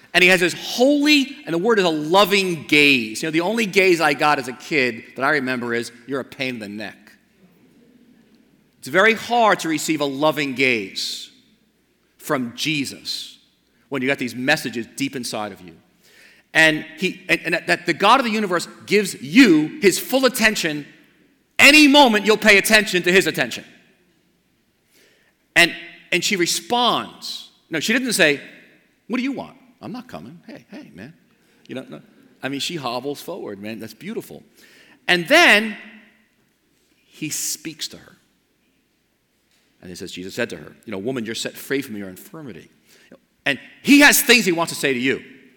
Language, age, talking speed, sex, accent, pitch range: English, 40-59, 180 wpm, male, American, 130-210 Hz